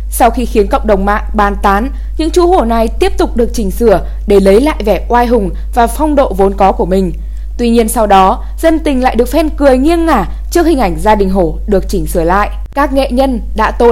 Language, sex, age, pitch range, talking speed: Vietnamese, female, 10-29, 205-270 Hz, 245 wpm